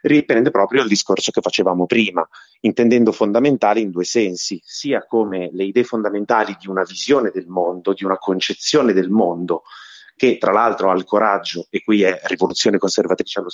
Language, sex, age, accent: Italian, male, 30-49, native